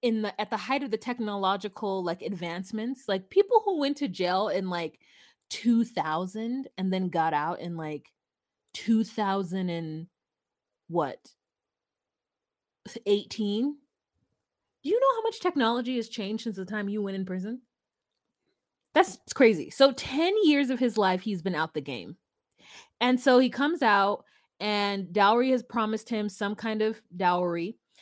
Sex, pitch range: female, 185-240 Hz